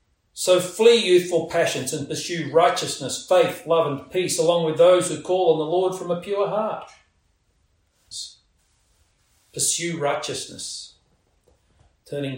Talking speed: 125 wpm